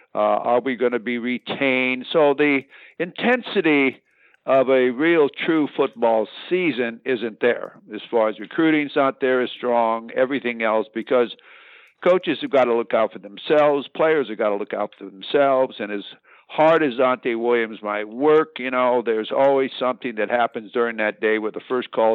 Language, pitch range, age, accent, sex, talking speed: English, 115-135 Hz, 60-79, American, male, 180 wpm